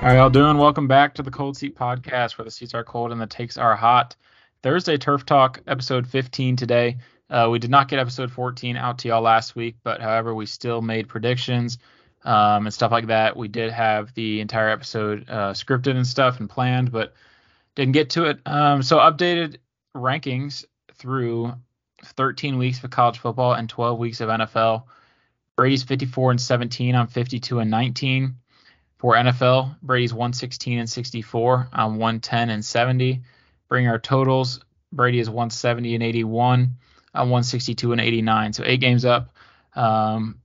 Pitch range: 115-130 Hz